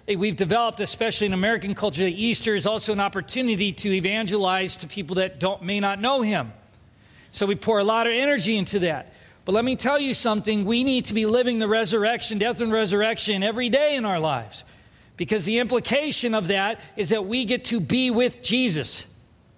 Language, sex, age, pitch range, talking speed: English, male, 40-59, 155-220 Hz, 195 wpm